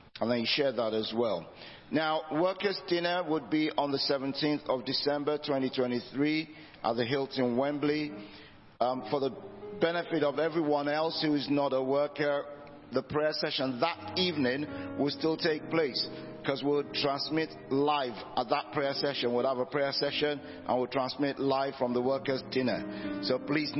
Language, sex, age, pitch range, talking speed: English, male, 50-69, 135-155 Hz, 165 wpm